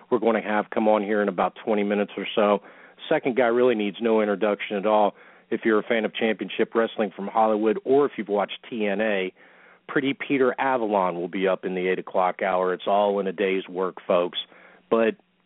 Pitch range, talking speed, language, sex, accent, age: 105-120 Hz, 210 wpm, English, male, American, 40-59